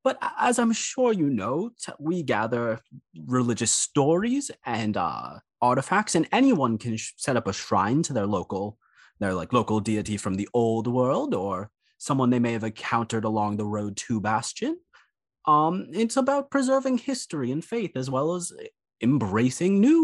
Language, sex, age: English, male, 30-49